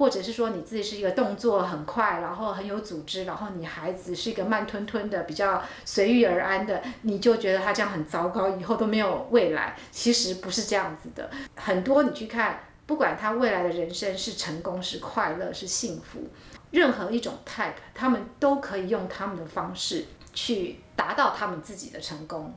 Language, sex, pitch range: Chinese, female, 185-235 Hz